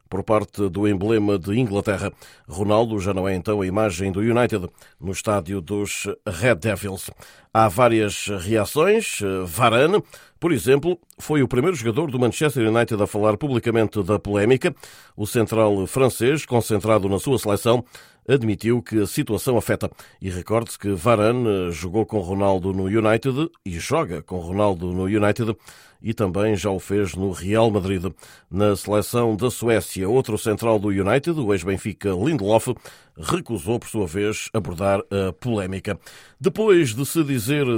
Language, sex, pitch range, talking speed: Portuguese, male, 100-135 Hz, 150 wpm